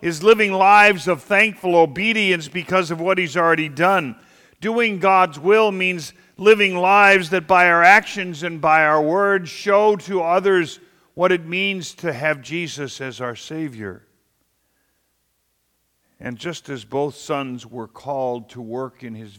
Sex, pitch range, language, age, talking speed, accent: male, 140-195 Hz, English, 50-69, 150 wpm, American